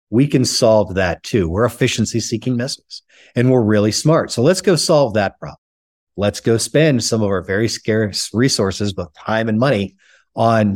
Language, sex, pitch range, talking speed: English, male, 95-125 Hz, 180 wpm